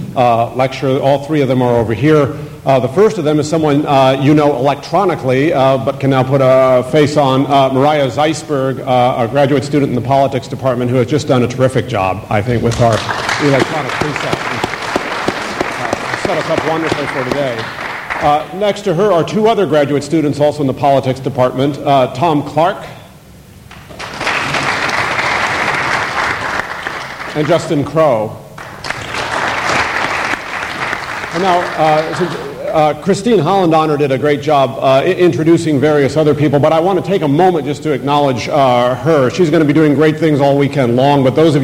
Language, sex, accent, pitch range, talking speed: English, male, American, 125-150 Hz, 175 wpm